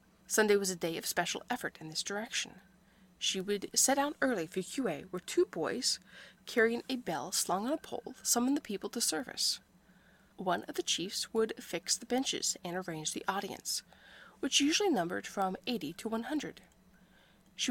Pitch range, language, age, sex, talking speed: 185-255 Hz, English, 20-39, female, 175 wpm